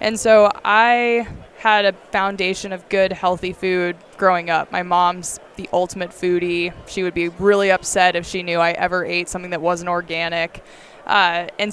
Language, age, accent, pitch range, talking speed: English, 20-39, American, 180-200 Hz, 175 wpm